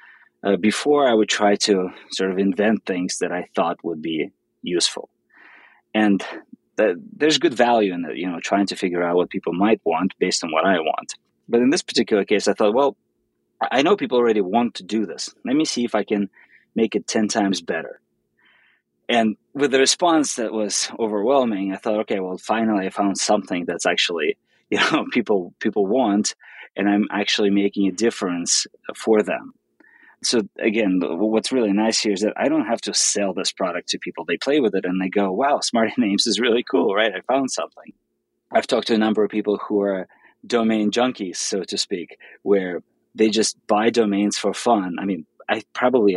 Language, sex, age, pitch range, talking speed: English, male, 20-39, 95-110 Hz, 200 wpm